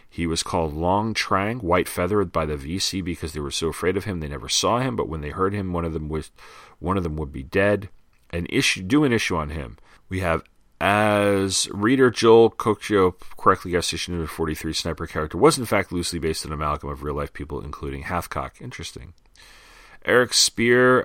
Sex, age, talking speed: male, 40-59, 205 wpm